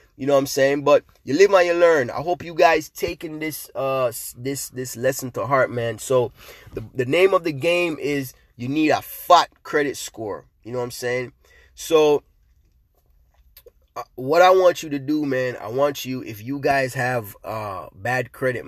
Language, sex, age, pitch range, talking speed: English, male, 20-39, 125-160 Hz, 200 wpm